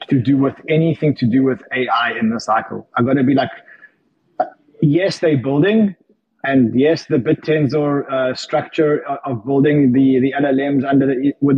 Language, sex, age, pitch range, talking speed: English, male, 20-39, 130-165 Hz, 160 wpm